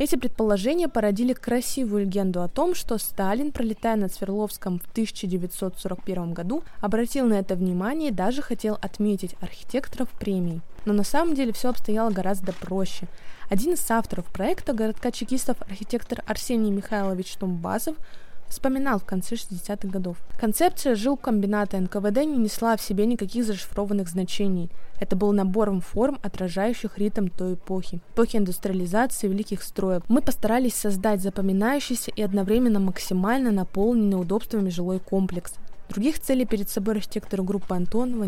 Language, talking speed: Russian, 140 wpm